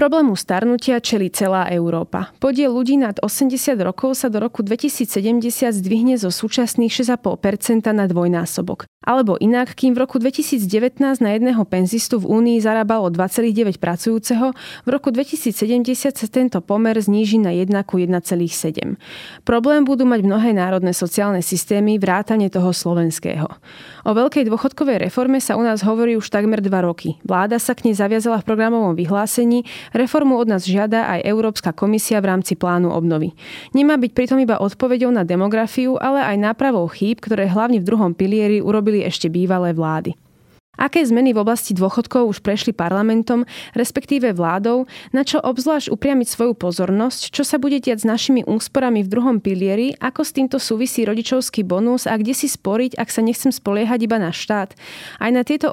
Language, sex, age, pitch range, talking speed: Slovak, female, 30-49, 195-250 Hz, 165 wpm